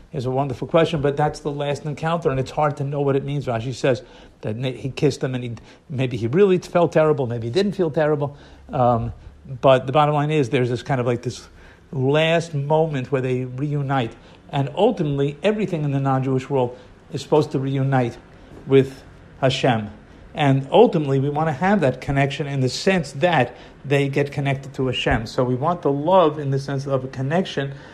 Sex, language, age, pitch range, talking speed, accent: male, English, 50-69, 125-150 Hz, 200 wpm, American